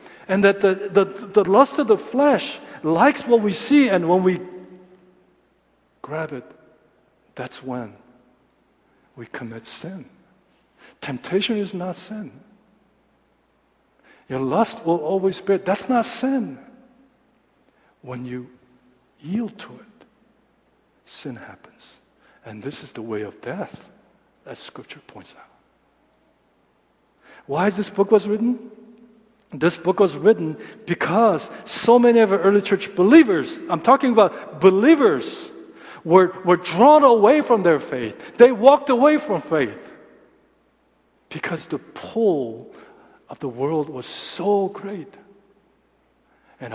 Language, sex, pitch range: Korean, male, 160-225 Hz